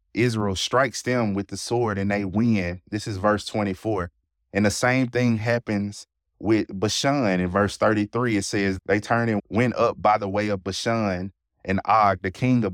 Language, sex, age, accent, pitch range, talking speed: English, male, 20-39, American, 90-115 Hz, 190 wpm